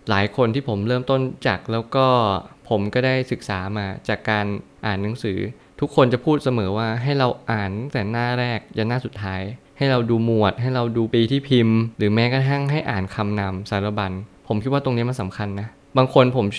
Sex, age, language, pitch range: male, 20-39, Thai, 105-130 Hz